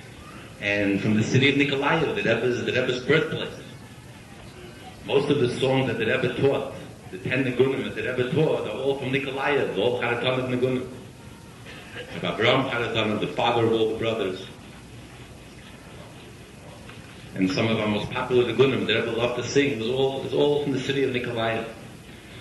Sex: male